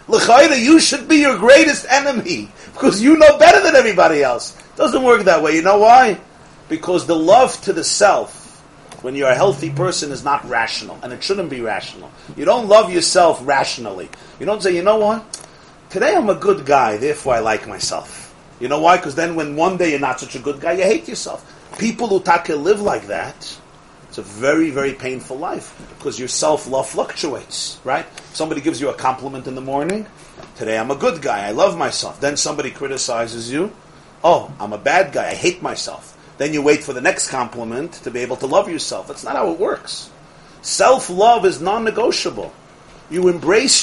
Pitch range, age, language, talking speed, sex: 150-225 Hz, 40-59, English, 200 wpm, male